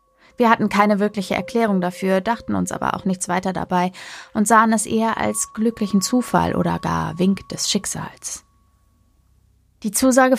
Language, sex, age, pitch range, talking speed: German, female, 20-39, 180-210 Hz, 155 wpm